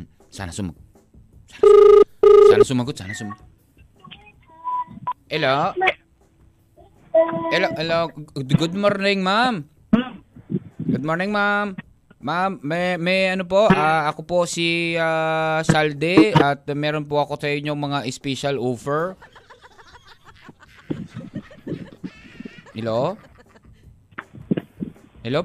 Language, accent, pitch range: Filipino, native, 150-205 Hz